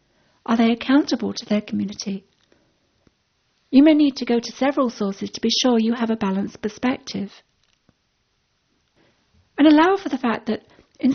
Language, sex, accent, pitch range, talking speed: English, female, British, 210-265 Hz, 155 wpm